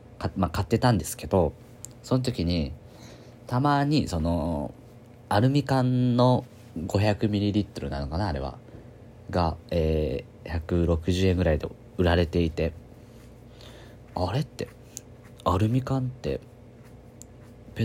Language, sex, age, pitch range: Japanese, male, 40-59, 85-120 Hz